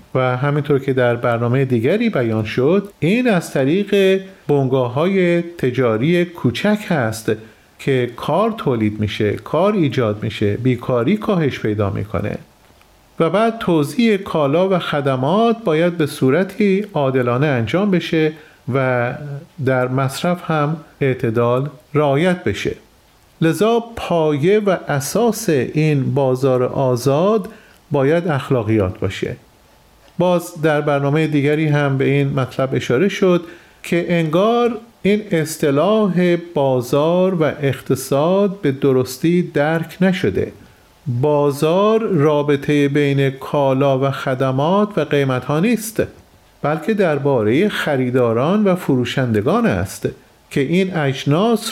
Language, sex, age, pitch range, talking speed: Persian, male, 40-59, 130-180 Hz, 110 wpm